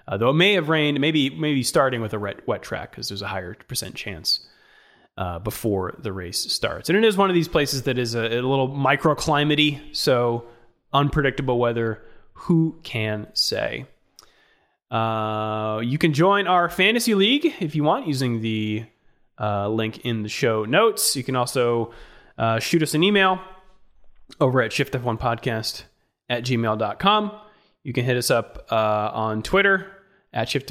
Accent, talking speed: American, 165 wpm